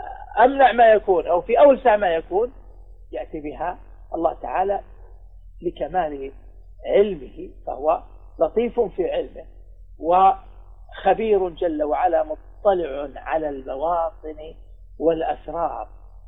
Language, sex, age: Arabic, male, 50-69